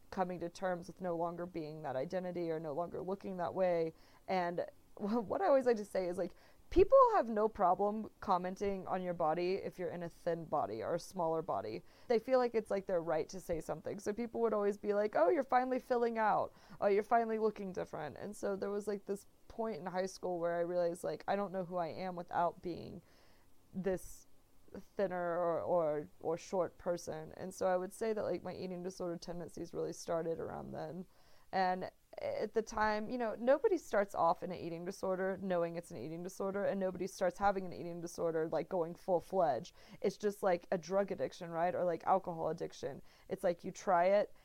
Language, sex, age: English, female, 20-39